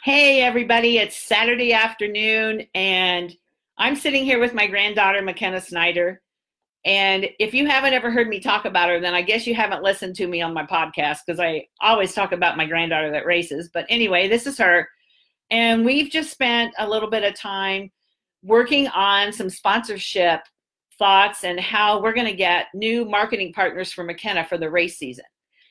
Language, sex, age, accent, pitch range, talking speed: English, female, 50-69, American, 180-230 Hz, 180 wpm